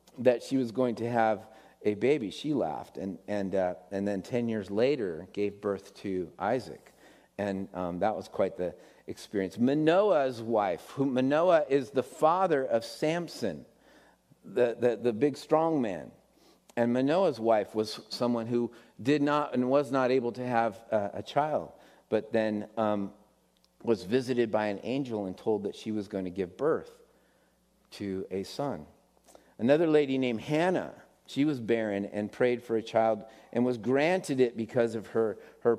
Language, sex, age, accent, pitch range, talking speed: English, male, 50-69, American, 105-130 Hz, 170 wpm